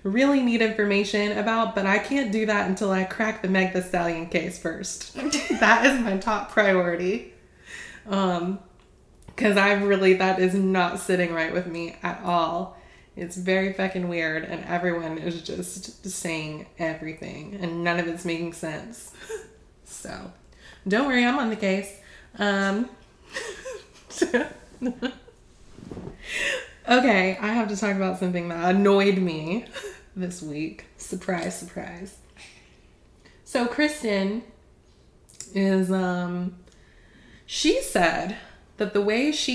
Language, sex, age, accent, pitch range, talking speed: English, female, 20-39, American, 175-210 Hz, 125 wpm